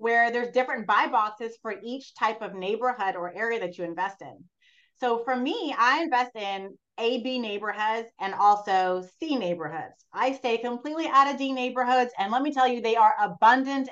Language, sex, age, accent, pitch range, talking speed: English, female, 30-49, American, 195-265 Hz, 190 wpm